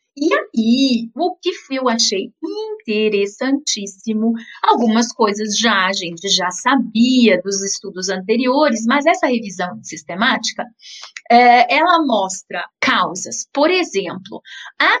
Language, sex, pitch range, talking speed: Portuguese, female, 210-265 Hz, 110 wpm